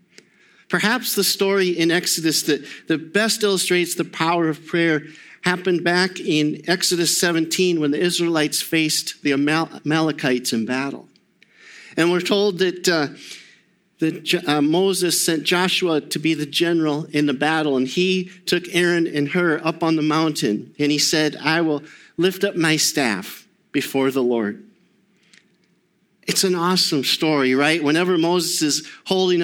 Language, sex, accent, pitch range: English, male, American, 145-175 Hz